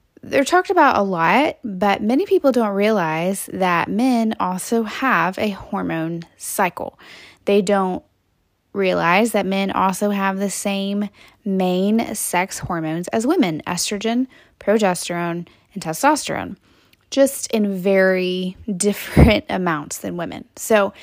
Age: 10-29